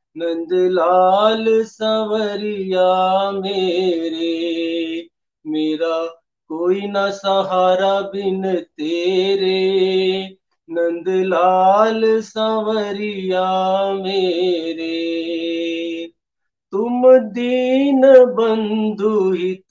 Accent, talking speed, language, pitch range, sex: native, 45 wpm, Hindi, 180-220 Hz, male